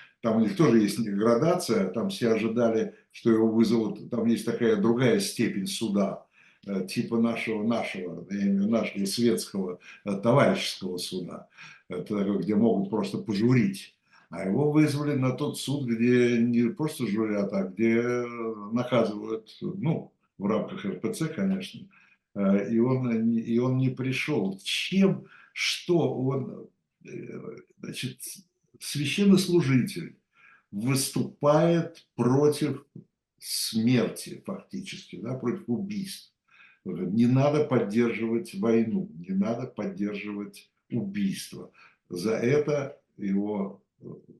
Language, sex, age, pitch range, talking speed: Russian, male, 60-79, 110-145 Hz, 110 wpm